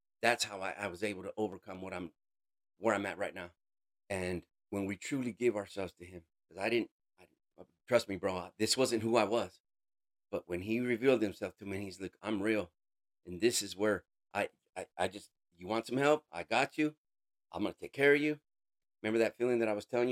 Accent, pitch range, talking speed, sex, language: American, 110-150 Hz, 225 wpm, male, English